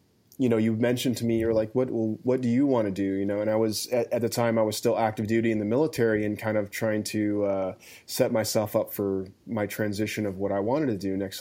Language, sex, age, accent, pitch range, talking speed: English, male, 20-39, American, 105-120 Hz, 275 wpm